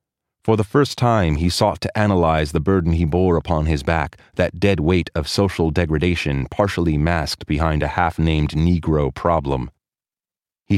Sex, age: male, 30-49